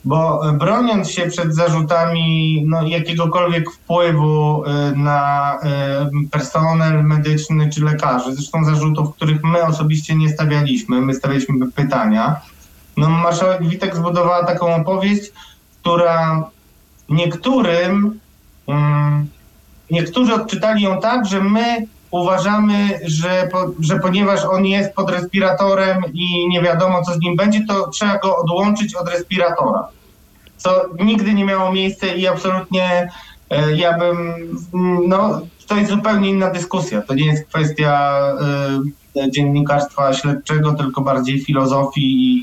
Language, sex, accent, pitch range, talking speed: Polish, male, native, 150-180 Hz, 120 wpm